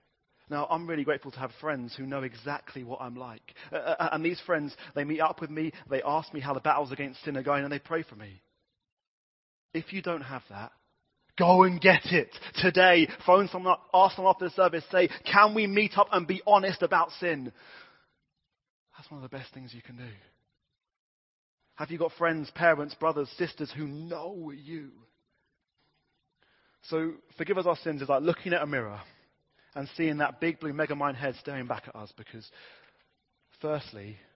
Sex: male